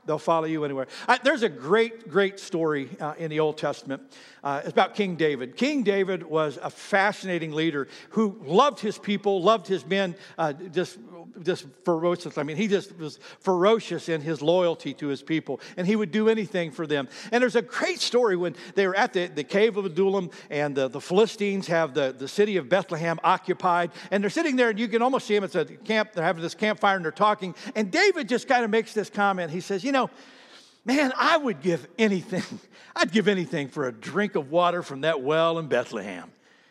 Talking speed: 205 wpm